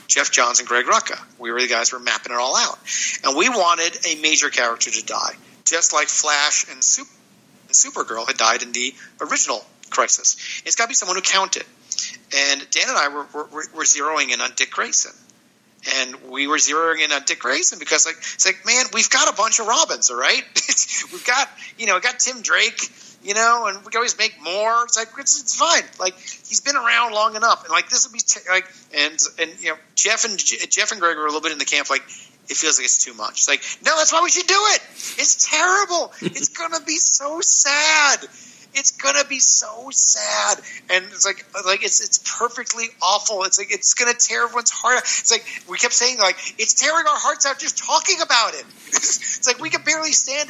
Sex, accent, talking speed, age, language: male, American, 225 wpm, 50-69, English